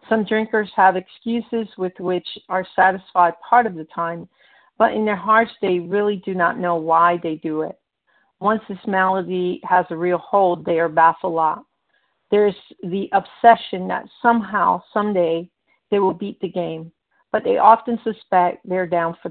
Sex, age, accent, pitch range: female, 50-69, American, 170-205 Hz